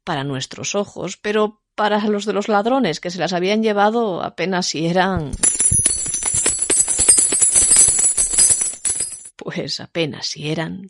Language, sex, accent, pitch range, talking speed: Spanish, female, Spanish, 145-235 Hz, 115 wpm